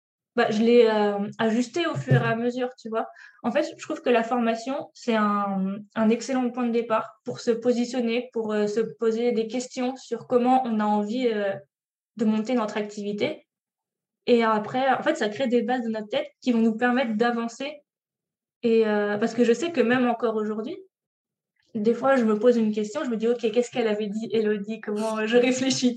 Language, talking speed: French, 210 wpm